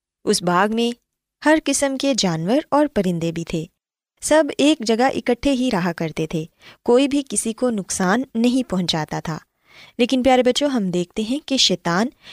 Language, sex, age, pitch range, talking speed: Urdu, female, 20-39, 185-265 Hz, 170 wpm